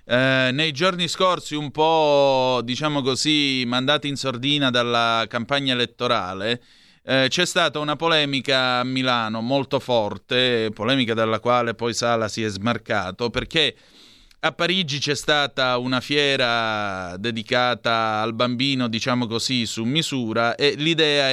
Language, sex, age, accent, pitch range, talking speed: Italian, male, 30-49, native, 115-145 Hz, 130 wpm